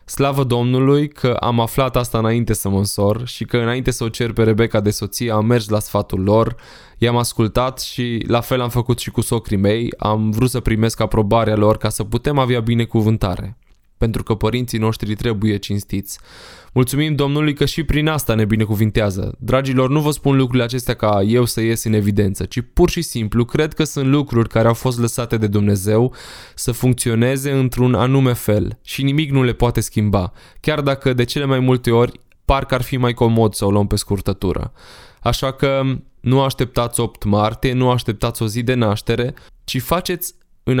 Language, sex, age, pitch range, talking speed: Romanian, male, 20-39, 110-130 Hz, 190 wpm